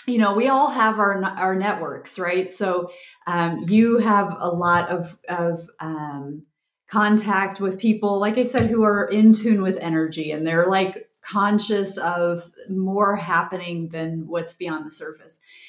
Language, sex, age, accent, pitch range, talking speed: English, female, 30-49, American, 175-210 Hz, 160 wpm